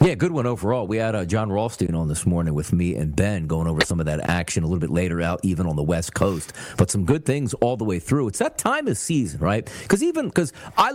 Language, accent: English, American